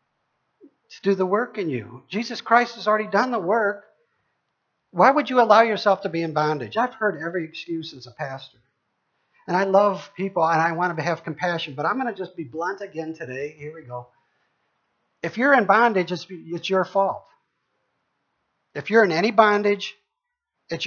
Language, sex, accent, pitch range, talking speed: English, male, American, 150-215 Hz, 185 wpm